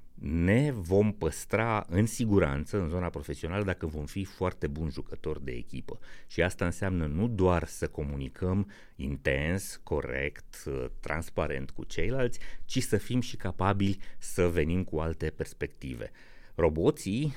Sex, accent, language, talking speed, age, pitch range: male, native, Romanian, 135 wpm, 30-49, 75-100 Hz